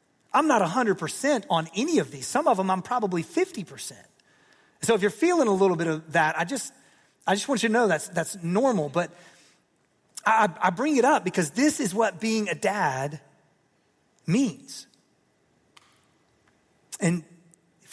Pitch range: 165-220 Hz